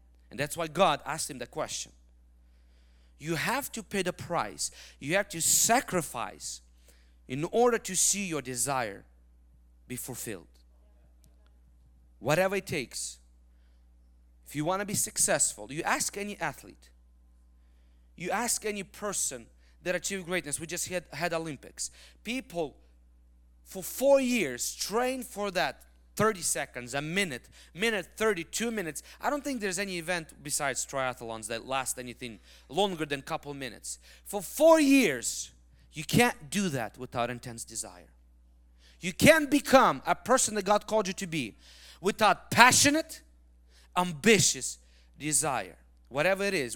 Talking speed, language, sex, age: 140 wpm, English, male, 40-59